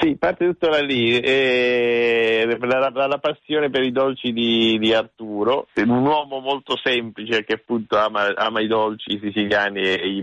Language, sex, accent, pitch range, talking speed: Italian, male, native, 100-120 Hz, 165 wpm